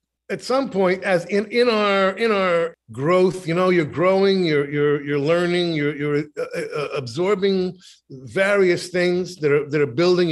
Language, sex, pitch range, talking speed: English, male, 140-180 Hz, 170 wpm